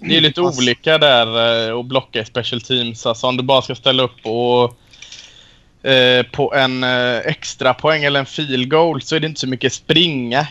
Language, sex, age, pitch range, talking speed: Swedish, male, 20-39, 115-130 Hz, 190 wpm